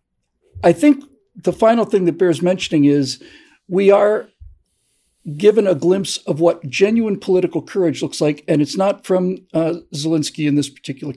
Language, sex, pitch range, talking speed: English, male, 145-195 Hz, 160 wpm